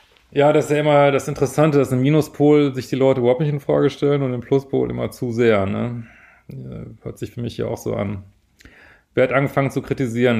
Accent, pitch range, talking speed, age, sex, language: German, 115-140 Hz, 220 wpm, 30-49, male, German